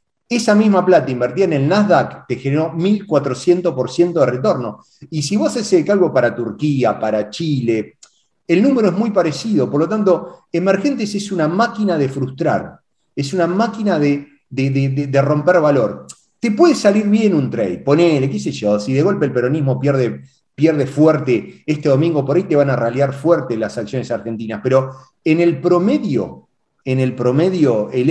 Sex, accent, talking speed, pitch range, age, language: male, Argentinian, 175 wpm, 130-175 Hz, 40-59, Spanish